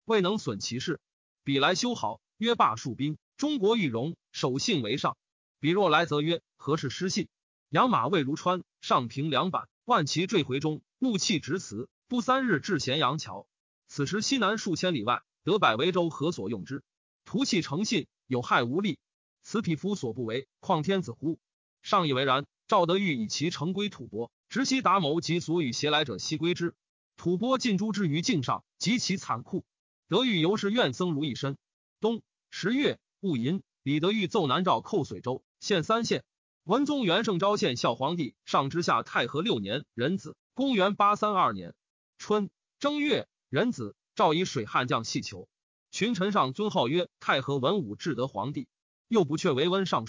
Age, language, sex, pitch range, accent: 30-49, Chinese, male, 150-210 Hz, native